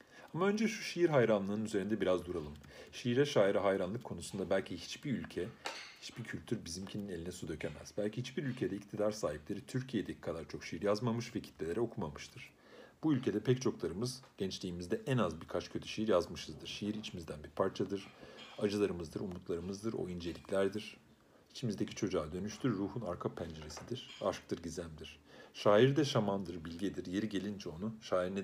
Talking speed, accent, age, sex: 150 wpm, native, 40-59, male